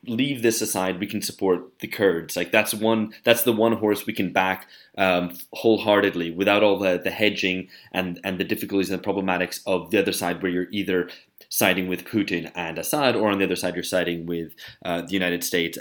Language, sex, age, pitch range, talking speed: English, male, 20-39, 90-110 Hz, 215 wpm